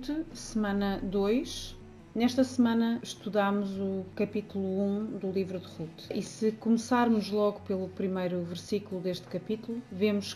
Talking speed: 135 wpm